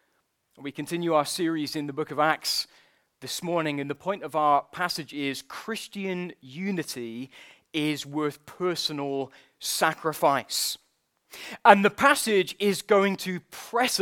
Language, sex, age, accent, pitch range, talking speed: English, male, 20-39, British, 150-195 Hz, 135 wpm